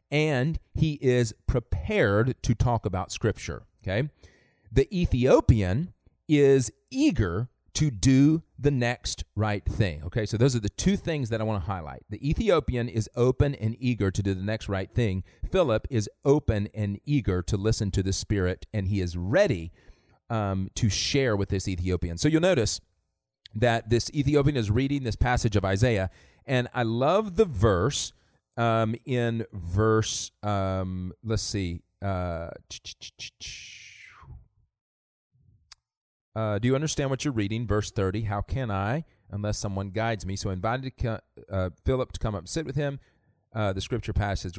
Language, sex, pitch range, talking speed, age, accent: English, male, 95-125 Hz, 160 wpm, 40-59, American